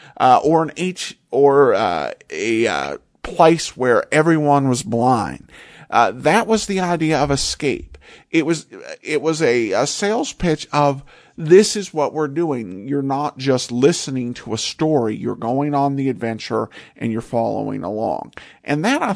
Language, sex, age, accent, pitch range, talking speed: English, male, 50-69, American, 125-185 Hz, 165 wpm